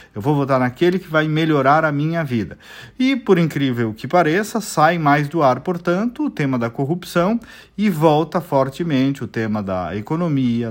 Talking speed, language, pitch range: 175 wpm, Portuguese, 120-175 Hz